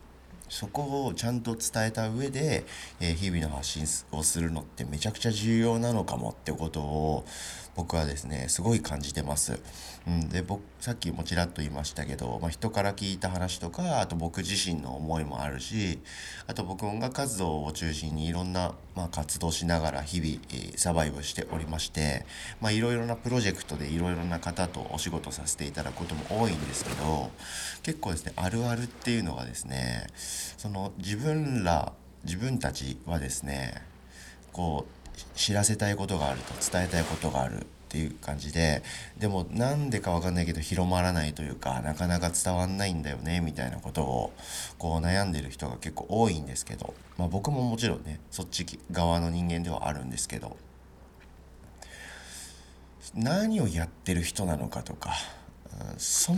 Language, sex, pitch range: Japanese, male, 70-95 Hz